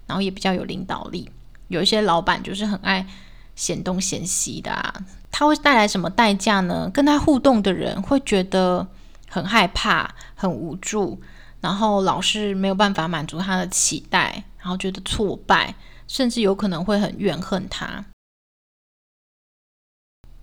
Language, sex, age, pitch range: Chinese, female, 20-39, 185-215 Hz